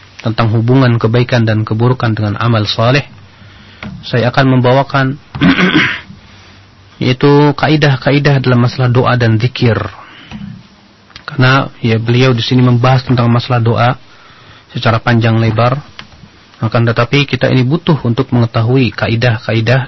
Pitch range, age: 115-135 Hz, 40-59